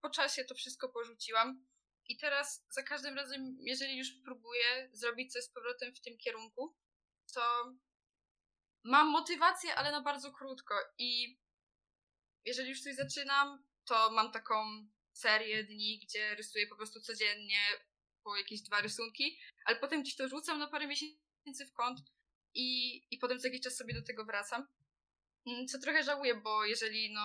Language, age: Polish, 10-29